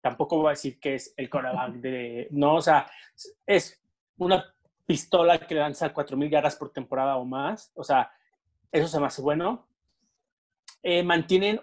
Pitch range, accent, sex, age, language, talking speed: 145-190 Hz, Mexican, male, 30-49, Spanish, 165 wpm